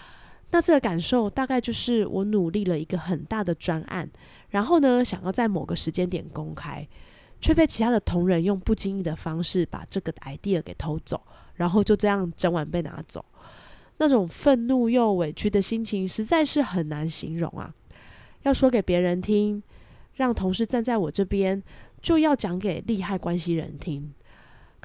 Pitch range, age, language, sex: 175-235 Hz, 20-39, Chinese, female